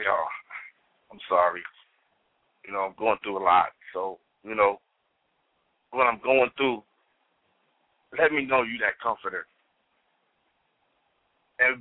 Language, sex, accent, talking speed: English, male, American, 120 wpm